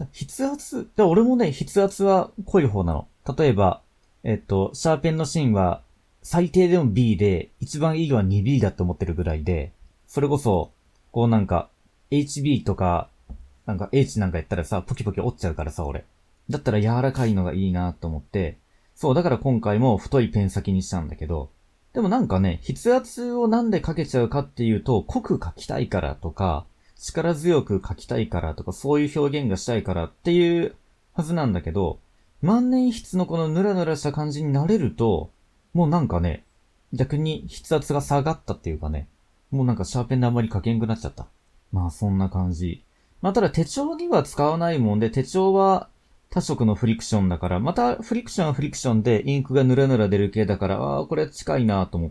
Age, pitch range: 40-59, 95-155 Hz